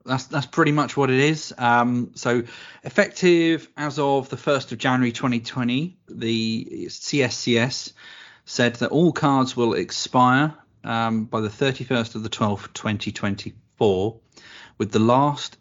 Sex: male